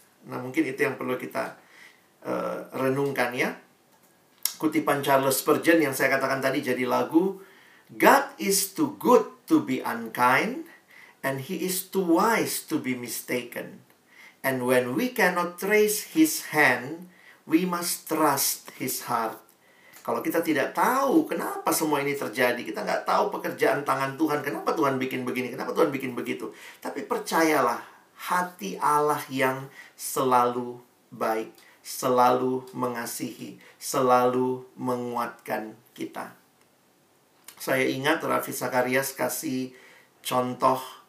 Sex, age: male, 50-69